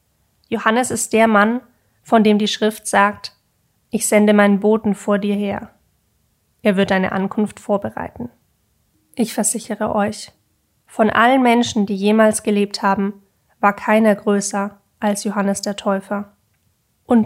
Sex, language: female, German